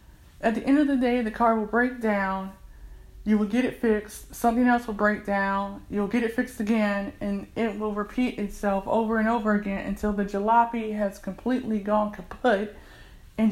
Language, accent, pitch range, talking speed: English, American, 200-230 Hz, 190 wpm